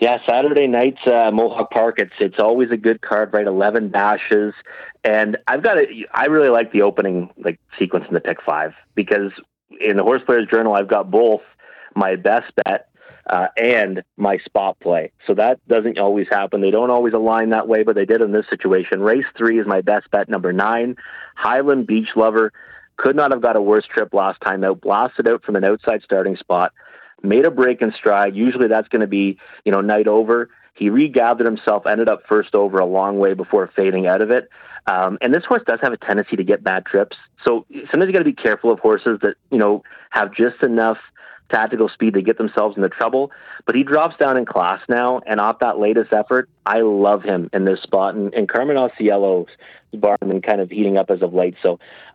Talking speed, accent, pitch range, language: 215 wpm, American, 100-115 Hz, English